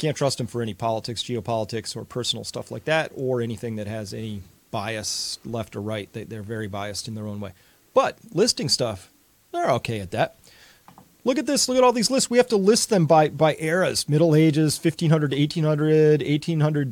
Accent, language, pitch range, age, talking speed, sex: American, Dutch, 115-160 Hz, 30-49, 200 wpm, male